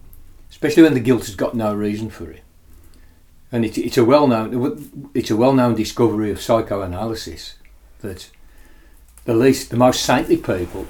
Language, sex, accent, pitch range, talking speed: English, male, British, 100-125 Hz, 155 wpm